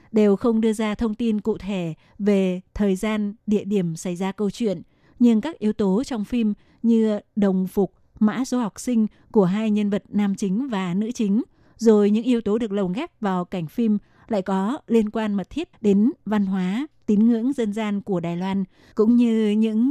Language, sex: Vietnamese, female